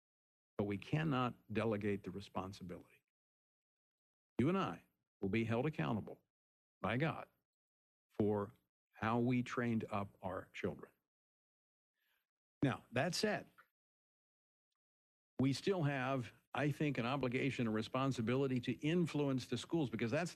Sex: male